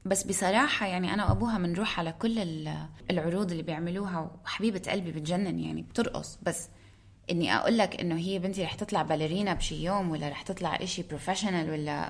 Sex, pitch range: female, 155-225 Hz